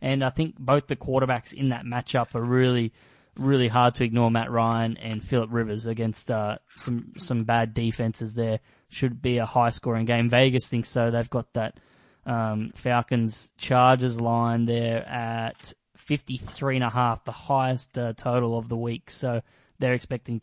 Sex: male